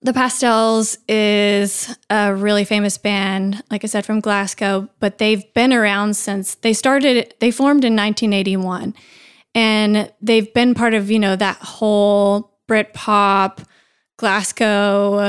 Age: 20-39